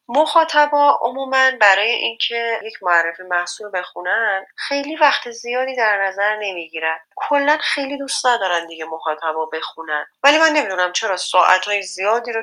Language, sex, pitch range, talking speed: Persian, female, 180-255 Hz, 135 wpm